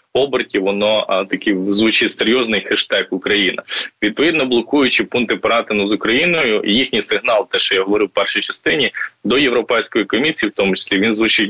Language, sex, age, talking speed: Ukrainian, male, 20-39, 155 wpm